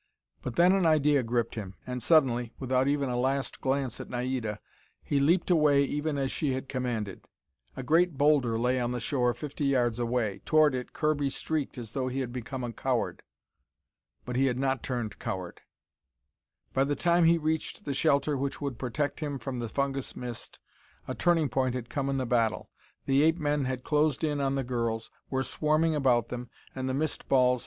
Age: 50-69